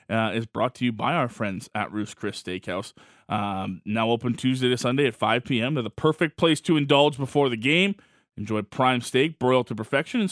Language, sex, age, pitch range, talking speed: English, male, 20-39, 110-145 Hz, 215 wpm